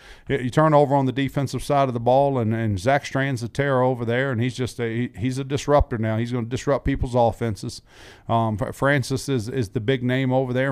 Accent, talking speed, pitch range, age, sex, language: American, 225 wpm, 115-135 Hz, 40-59, male, English